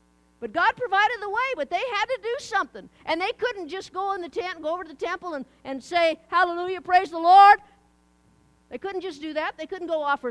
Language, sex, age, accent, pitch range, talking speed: English, female, 50-69, American, 250-390 Hz, 240 wpm